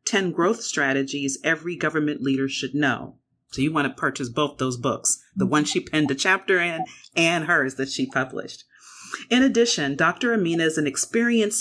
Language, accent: English, American